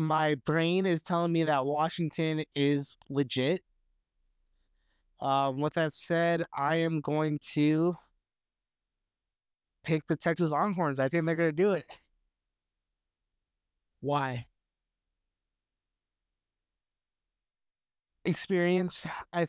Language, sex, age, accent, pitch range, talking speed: English, male, 20-39, American, 110-170 Hz, 95 wpm